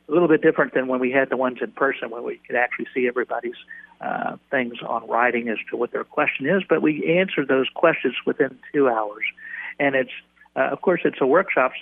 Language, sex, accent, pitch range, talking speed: English, male, American, 120-145 Hz, 230 wpm